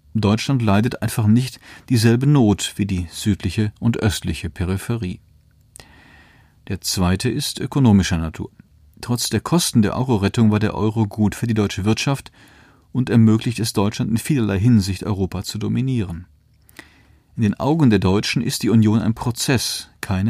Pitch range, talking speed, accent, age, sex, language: 100-120 Hz, 150 wpm, German, 40-59, male, German